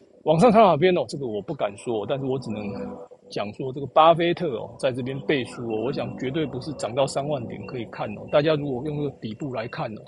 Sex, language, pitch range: male, Chinese, 130-175 Hz